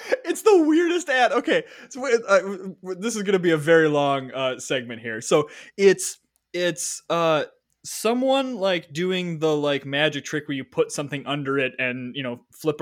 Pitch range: 130-200 Hz